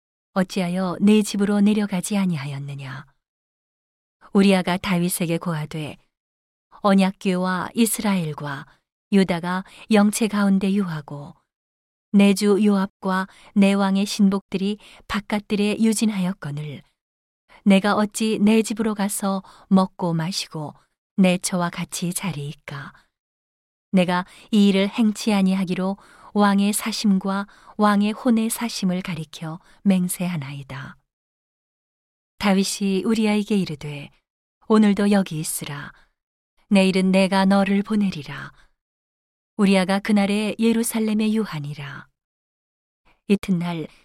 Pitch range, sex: 170-205 Hz, female